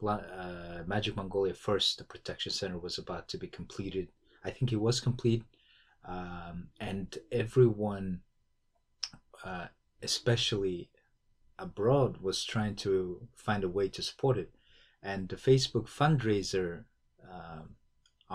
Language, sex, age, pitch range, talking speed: English, male, 30-49, 95-115 Hz, 120 wpm